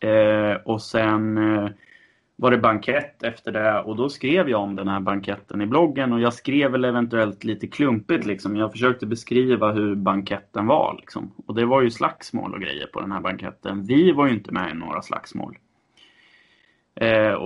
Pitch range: 105-125 Hz